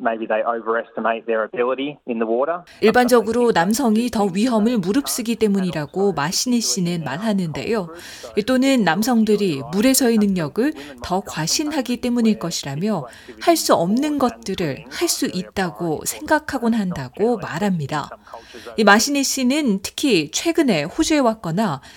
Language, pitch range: Korean, 180-255 Hz